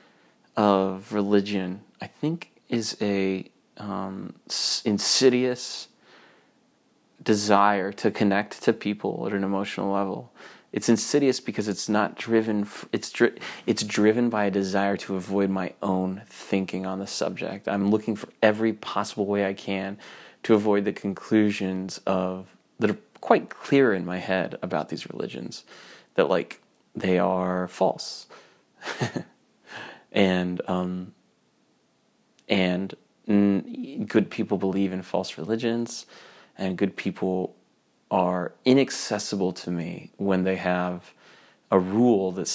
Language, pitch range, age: English, 90-105 Hz, 30-49